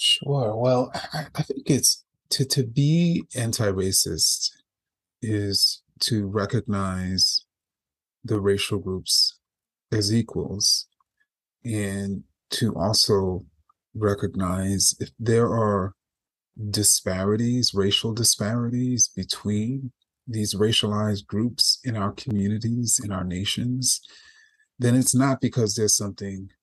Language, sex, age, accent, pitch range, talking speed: English, male, 30-49, American, 100-115 Hz, 95 wpm